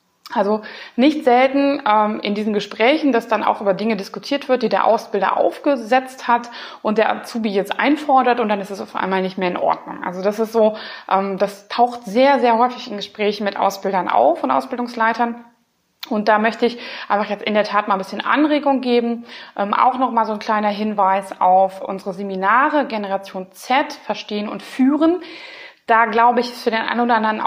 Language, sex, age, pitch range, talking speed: German, female, 20-39, 205-245 Hz, 195 wpm